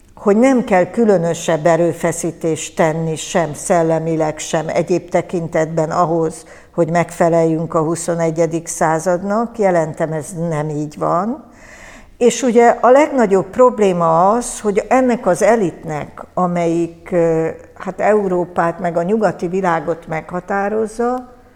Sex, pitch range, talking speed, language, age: female, 165-210 Hz, 110 wpm, Hungarian, 60-79